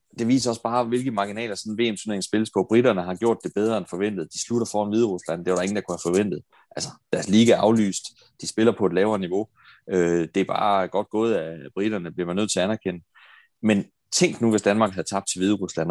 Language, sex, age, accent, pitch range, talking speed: Danish, male, 30-49, native, 90-110 Hz, 235 wpm